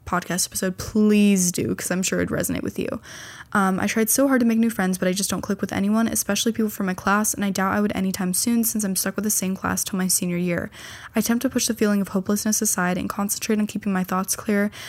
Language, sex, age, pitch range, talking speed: English, female, 10-29, 185-220 Hz, 265 wpm